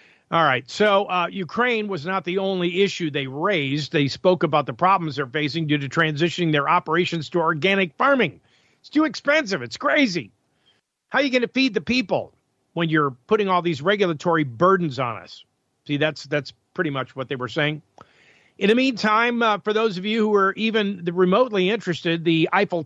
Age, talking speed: 50-69, 190 wpm